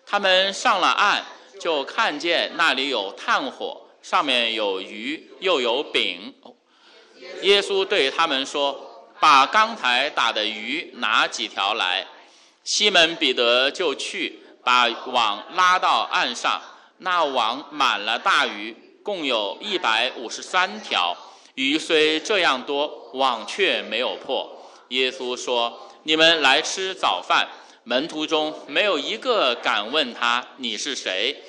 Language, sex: English, male